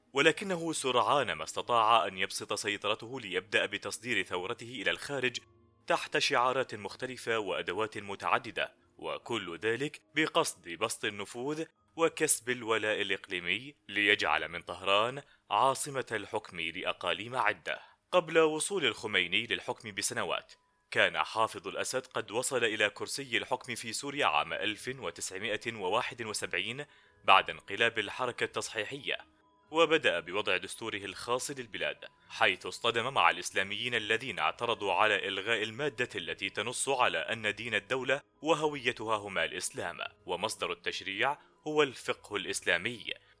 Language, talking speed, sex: Arabic, 110 wpm, male